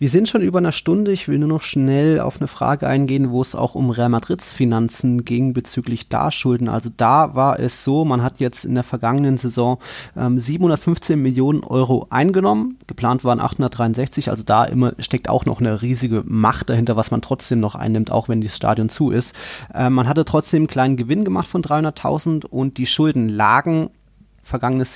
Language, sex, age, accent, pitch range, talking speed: German, male, 20-39, German, 115-135 Hz, 195 wpm